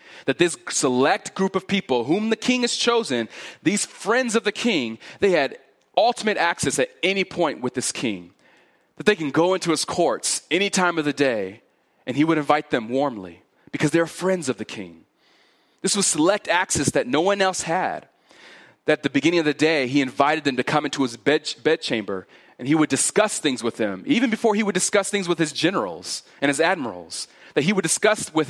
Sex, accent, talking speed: male, American, 205 wpm